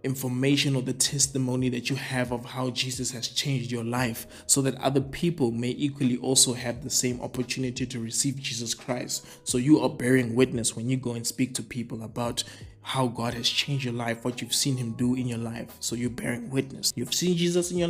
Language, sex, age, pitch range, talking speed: English, male, 20-39, 120-140 Hz, 220 wpm